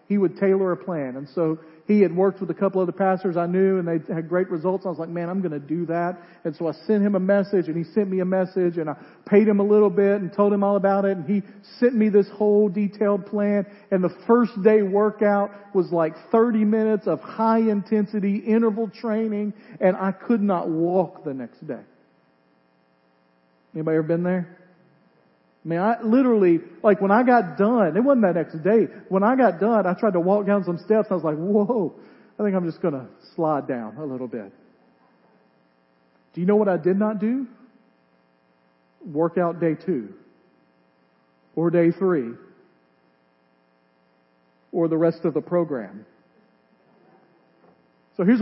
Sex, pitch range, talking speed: male, 155-205 Hz, 190 wpm